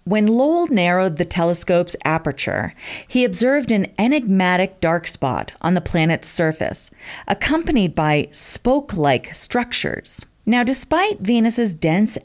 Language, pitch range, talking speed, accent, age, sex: English, 165-230 Hz, 120 wpm, American, 40-59, female